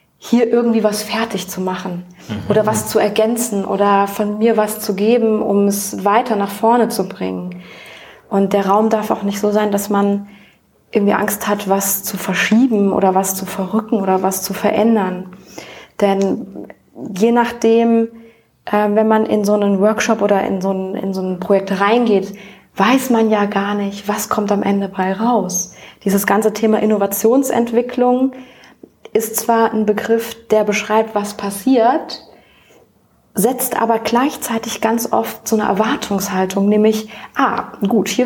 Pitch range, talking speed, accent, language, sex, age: 200-225 Hz, 155 wpm, German, German, female, 20-39